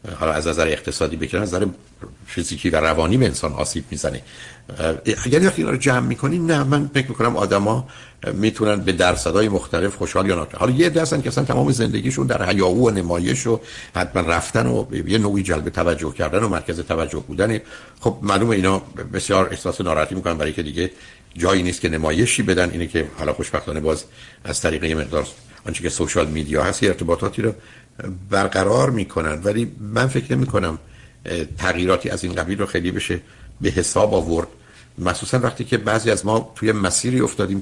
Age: 60-79